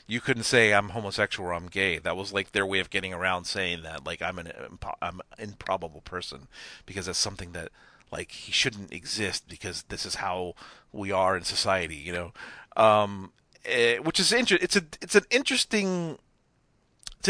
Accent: American